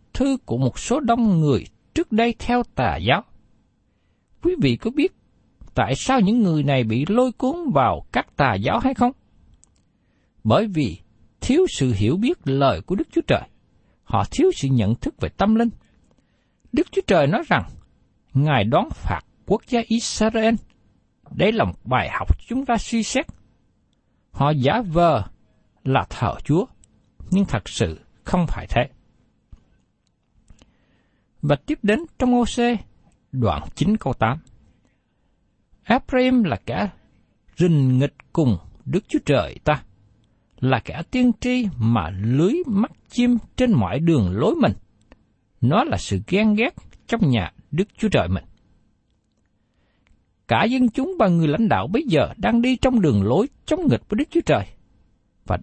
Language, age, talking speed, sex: Vietnamese, 60-79, 155 wpm, male